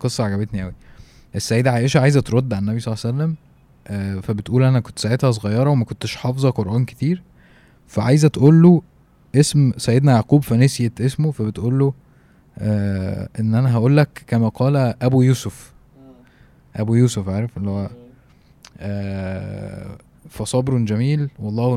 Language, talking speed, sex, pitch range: Arabic, 145 wpm, male, 105-130 Hz